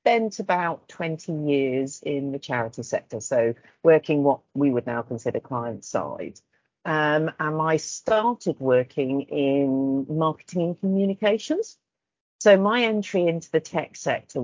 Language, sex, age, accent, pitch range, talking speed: English, female, 40-59, British, 135-185 Hz, 135 wpm